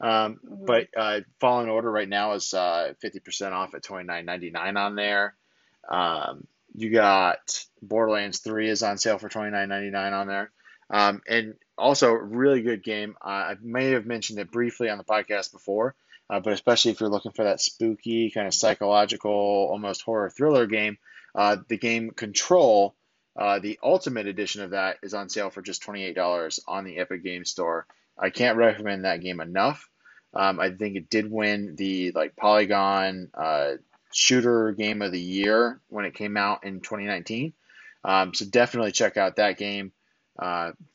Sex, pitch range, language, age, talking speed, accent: male, 95-110 Hz, English, 20-39, 170 wpm, American